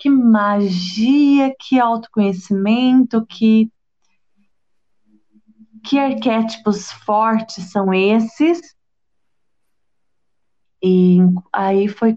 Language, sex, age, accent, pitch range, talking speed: Portuguese, female, 40-59, Brazilian, 180-225 Hz, 65 wpm